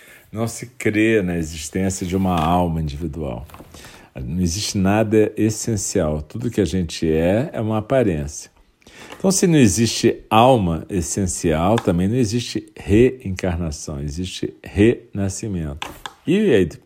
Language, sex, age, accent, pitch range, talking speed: Portuguese, male, 50-69, Brazilian, 90-115 Hz, 125 wpm